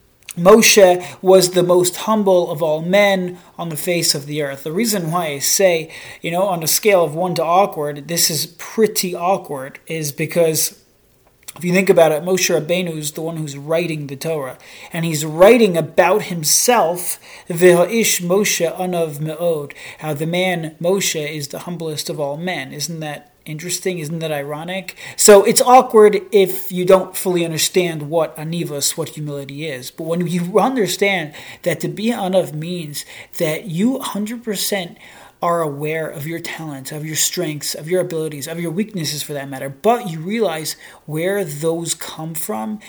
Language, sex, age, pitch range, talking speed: English, male, 30-49, 155-185 Hz, 165 wpm